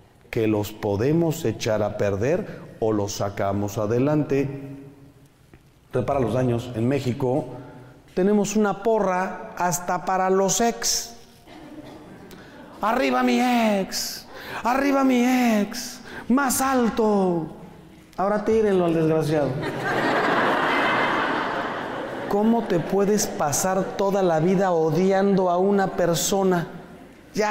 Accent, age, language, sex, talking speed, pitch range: Mexican, 40-59, Spanish, male, 100 wpm, 130-185 Hz